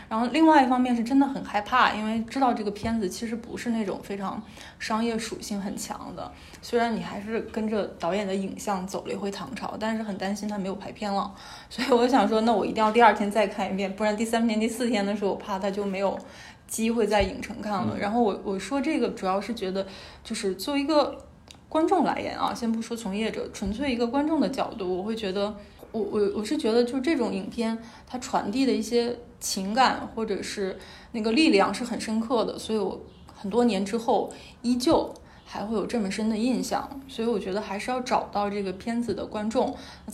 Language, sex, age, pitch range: Chinese, female, 20-39, 205-240 Hz